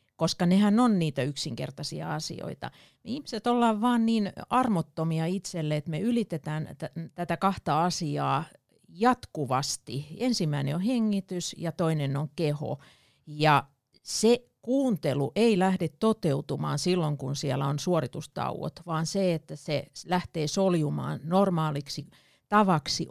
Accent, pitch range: native, 145-195 Hz